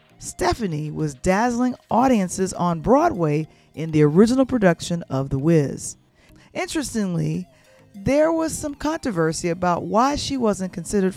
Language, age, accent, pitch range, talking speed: English, 40-59, American, 150-215 Hz, 125 wpm